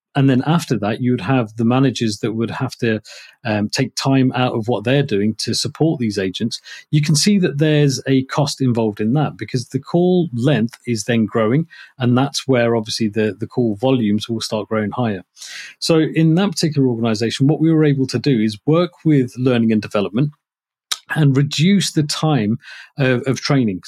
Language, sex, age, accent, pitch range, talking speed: English, male, 40-59, British, 115-145 Hz, 195 wpm